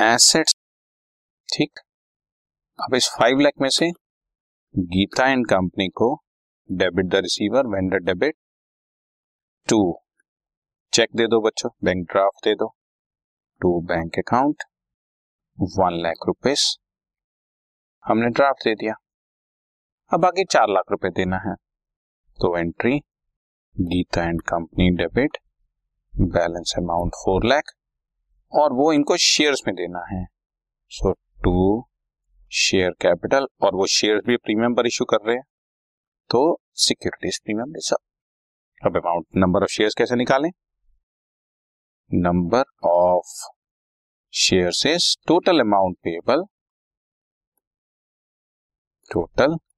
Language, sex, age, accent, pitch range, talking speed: Hindi, male, 30-49, native, 85-115 Hz, 105 wpm